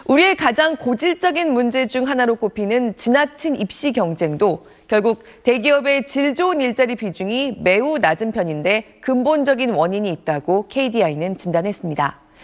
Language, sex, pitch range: Korean, female, 195-295 Hz